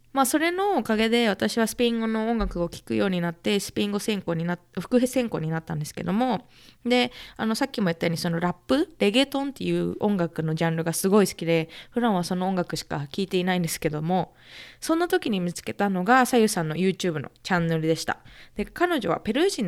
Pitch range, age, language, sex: 170-245 Hz, 20-39, Japanese, female